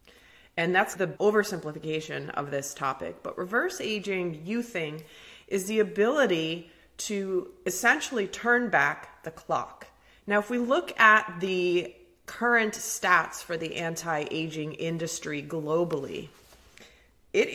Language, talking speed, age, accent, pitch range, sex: English, 120 wpm, 30-49, American, 155-205 Hz, female